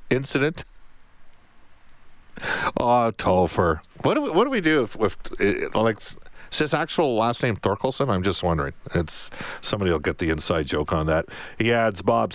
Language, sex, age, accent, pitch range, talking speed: English, male, 50-69, American, 95-125 Hz, 165 wpm